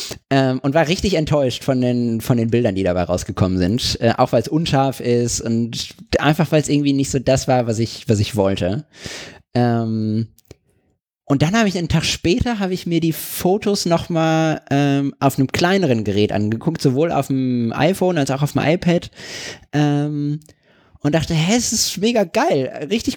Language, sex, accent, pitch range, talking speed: German, male, German, 115-160 Hz, 190 wpm